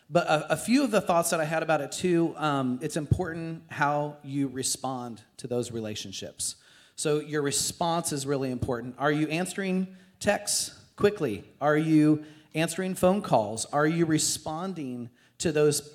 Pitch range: 125-160 Hz